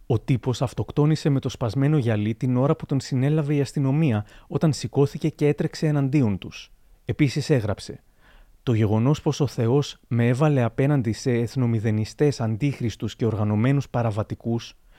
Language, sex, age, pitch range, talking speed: Greek, male, 30-49, 115-145 Hz, 145 wpm